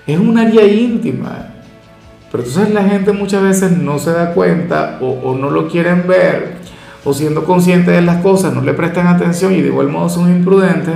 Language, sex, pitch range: Spanish, male, 135-185 Hz